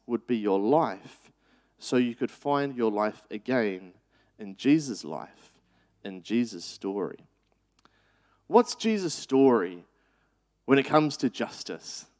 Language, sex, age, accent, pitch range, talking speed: English, male, 30-49, Australian, 115-165 Hz, 125 wpm